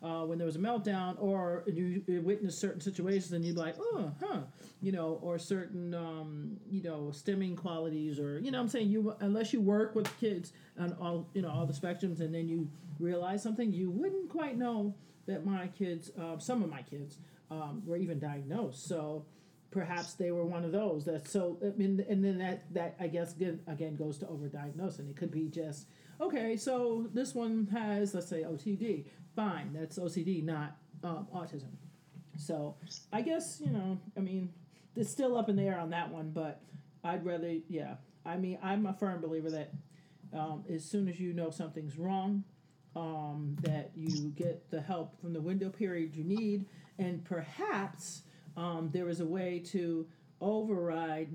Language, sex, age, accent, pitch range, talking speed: English, male, 40-59, American, 160-195 Hz, 185 wpm